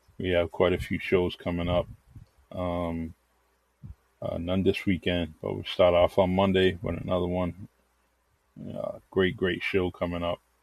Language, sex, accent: English, male, American